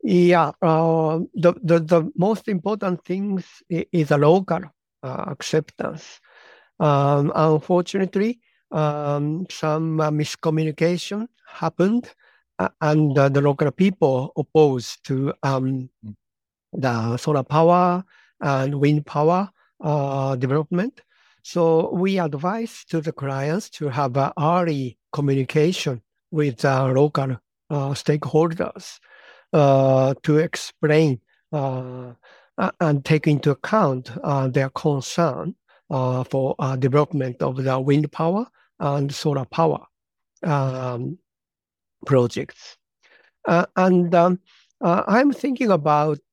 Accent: Japanese